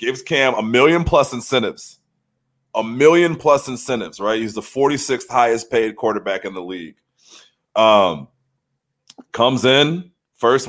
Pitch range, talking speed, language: 110-135 Hz, 135 wpm, English